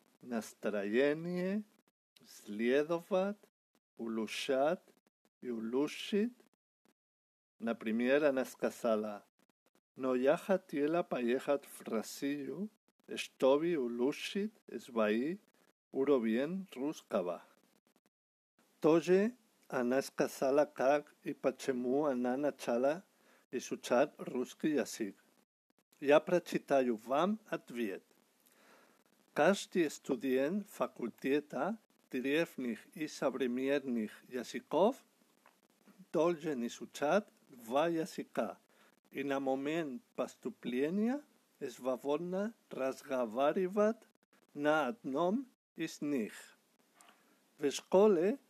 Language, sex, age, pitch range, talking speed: Russian, male, 50-69, 130-195 Hz, 70 wpm